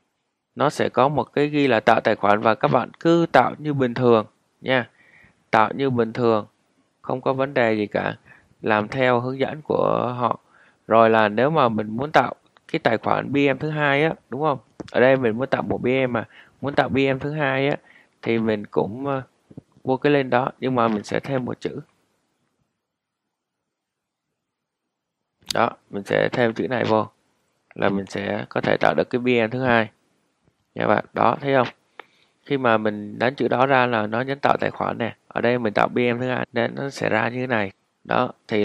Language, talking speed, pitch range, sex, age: Vietnamese, 200 wpm, 105-135 Hz, male, 20-39